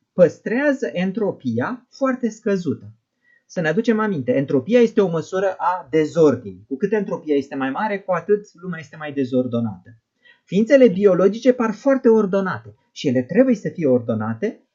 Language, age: Romanian, 30-49